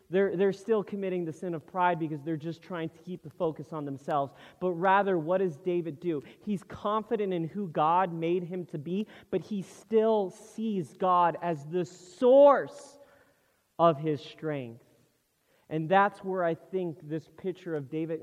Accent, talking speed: American, 175 wpm